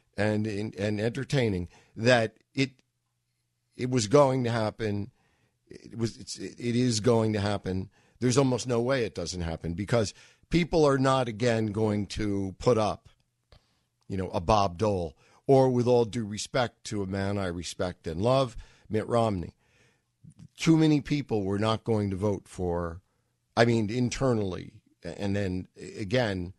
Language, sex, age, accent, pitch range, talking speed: English, male, 50-69, American, 95-120 Hz, 155 wpm